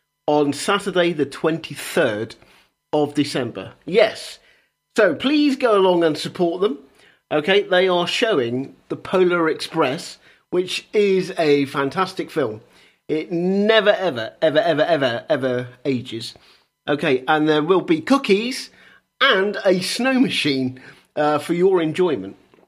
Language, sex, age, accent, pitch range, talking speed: English, male, 40-59, British, 145-195 Hz, 125 wpm